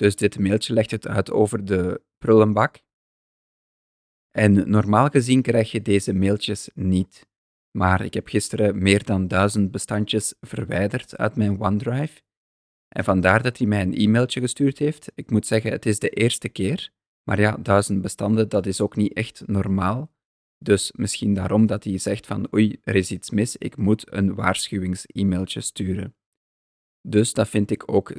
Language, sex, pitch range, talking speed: Dutch, male, 95-110 Hz, 165 wpm